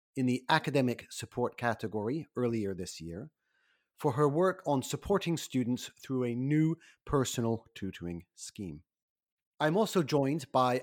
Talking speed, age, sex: 135 wpm, 30-49, male